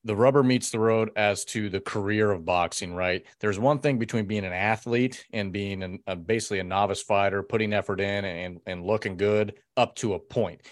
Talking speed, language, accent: 205 wpm, English, American